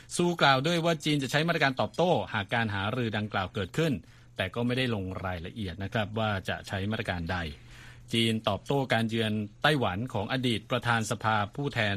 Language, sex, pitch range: Thai, male, 105-130 Hz